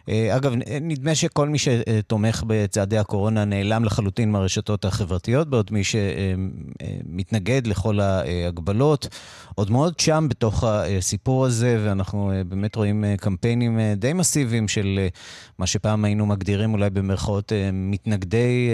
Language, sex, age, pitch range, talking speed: Hebrew, male, 30-49, 100-130 Hz, 115 wpm